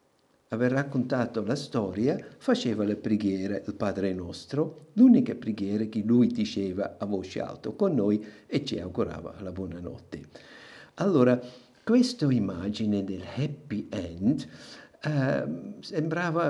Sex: male